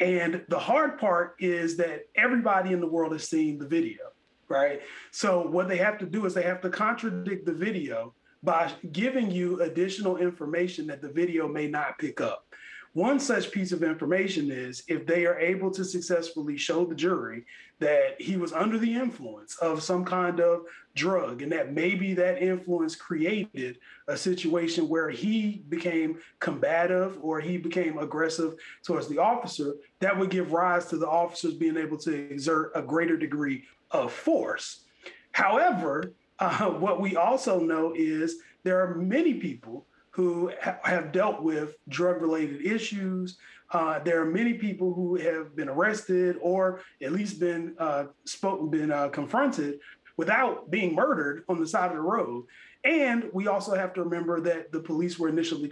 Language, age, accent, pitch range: English, 30-49, American, 160-185 Hz